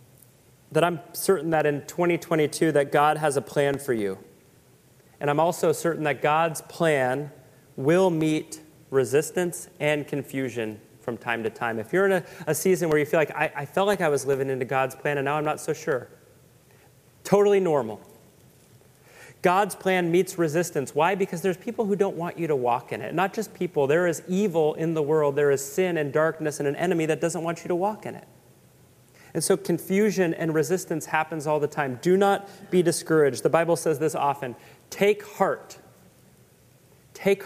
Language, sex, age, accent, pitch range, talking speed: English, male, 30-49, American, 140-180 Hz, 190 wpm